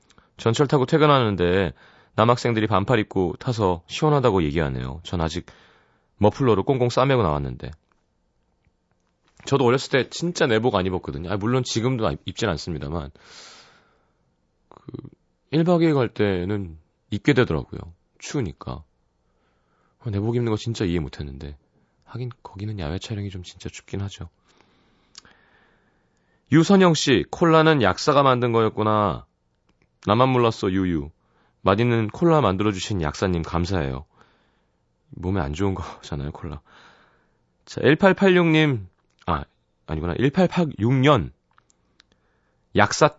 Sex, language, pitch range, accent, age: male, Korean, 85-130 Hz, native, 30-49